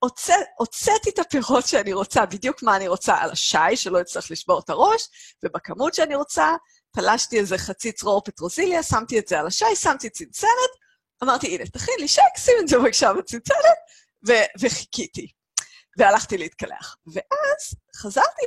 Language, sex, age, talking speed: Hebrew, female, 30-49, 155 wpm